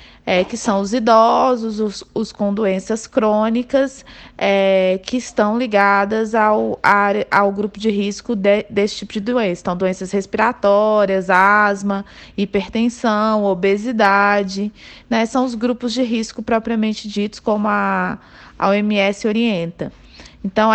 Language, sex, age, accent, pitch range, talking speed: Portuguese, female, 20-39, Brazilian, 210-245 Hz, 120 wpm